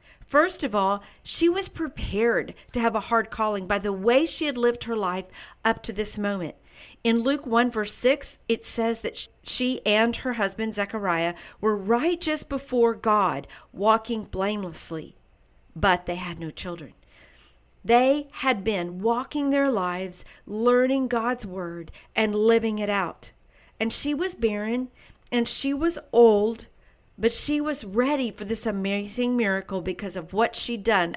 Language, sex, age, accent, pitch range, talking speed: English, female, 50-69, American, 200-260 Hz, 155 wpm